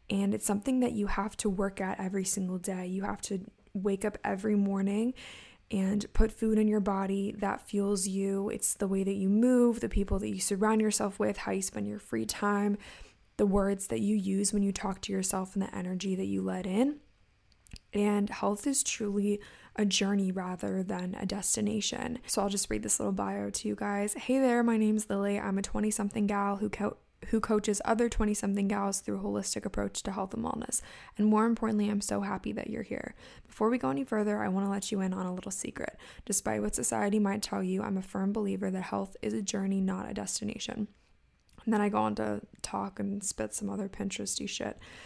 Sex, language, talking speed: female, English, 215 wpm